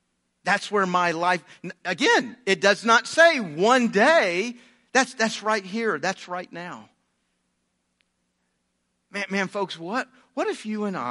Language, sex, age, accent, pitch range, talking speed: English, male, 50-69, American, 155-235 Hz, 140 wpm